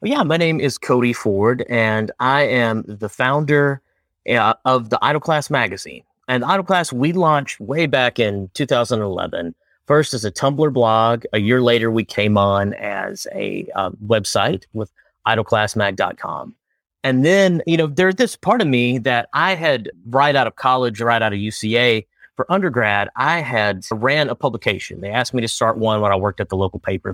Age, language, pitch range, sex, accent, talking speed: 30-49, English, 110-145 Hz, male, American, 185 wpm